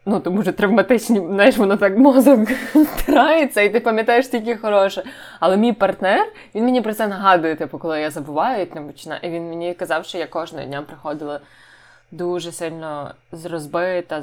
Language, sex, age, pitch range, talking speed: Ukrainian, female, 20-39, 155-195 Hz, 170 wpm